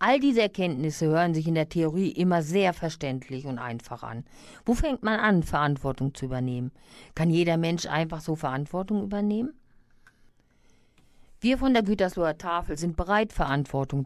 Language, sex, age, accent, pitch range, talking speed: German, female, 50-69, German, 155-225 Hz, 155 wpm